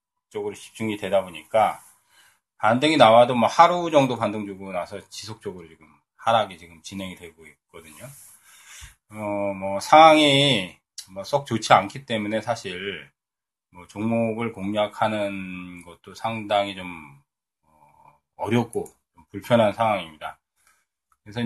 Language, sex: Korean, male